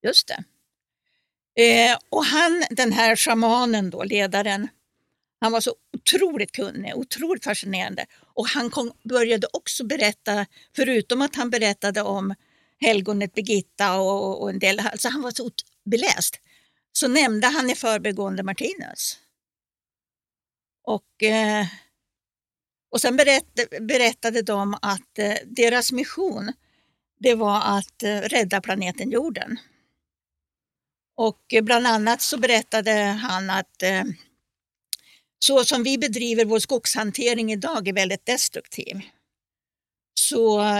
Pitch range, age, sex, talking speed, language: 200-250 Hz, 60-79, female, 110 wpm, English